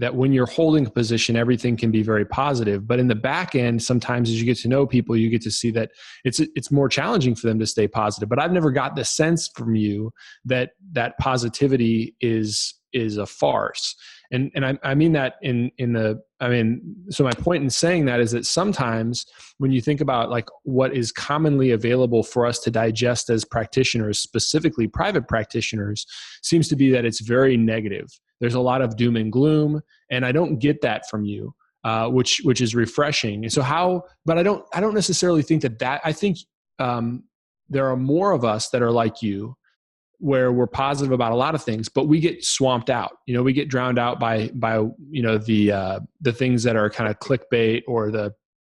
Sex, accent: male, American